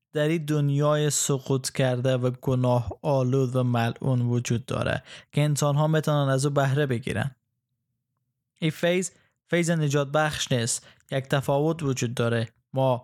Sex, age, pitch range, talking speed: male, 20-39, 125-150 Hz, 145 wpm